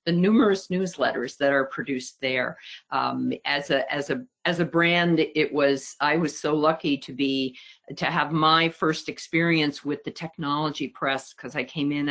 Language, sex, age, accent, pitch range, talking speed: English, female, 50-69, American, 130-150 Hz, 180 wpm